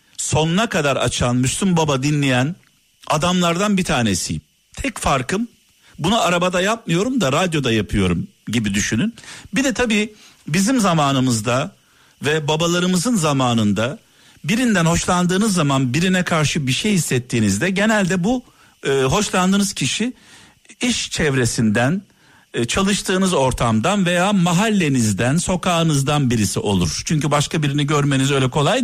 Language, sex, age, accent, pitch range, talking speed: Turkish, male, 50-69, native, 125-180 Hz, 110 wpm